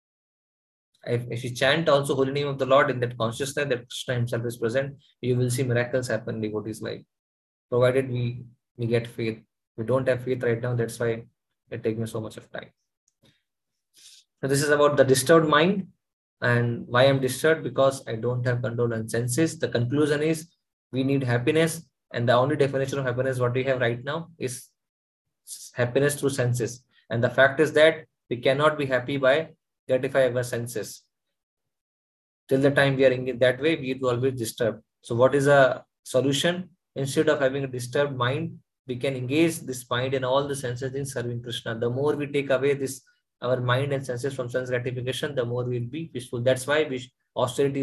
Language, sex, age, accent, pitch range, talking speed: English, male, 20-39, Indian, 120-140 Hz, 195 wpm